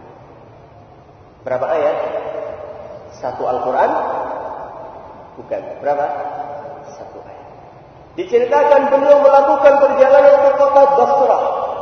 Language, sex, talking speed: Malay, male, 75 wpm